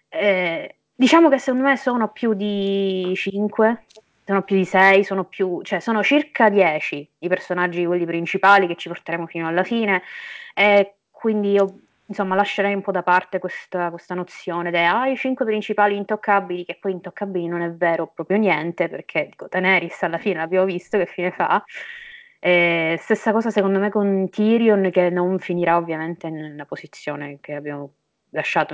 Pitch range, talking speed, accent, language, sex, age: 170-205 Hz, 170 wpm, native, Italian, female, 20-39